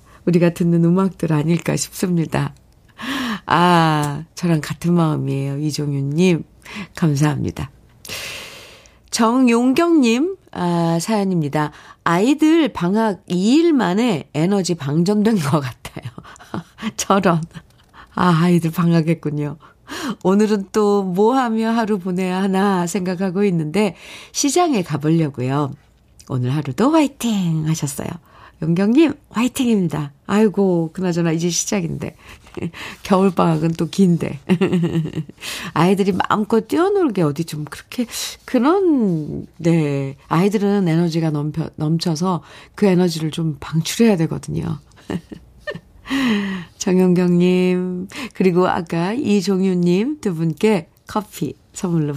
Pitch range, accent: 160-210 Hz, native